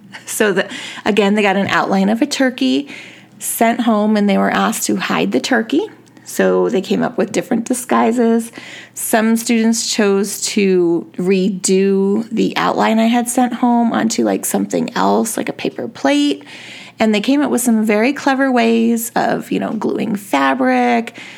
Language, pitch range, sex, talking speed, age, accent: English, 205-255 Hz, female, 170 wpm, 30-49, American